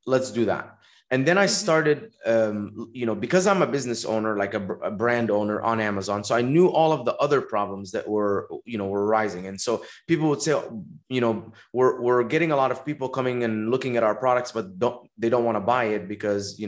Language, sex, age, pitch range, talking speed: English, male, 20-39, 110-145 Hz, 235 wpm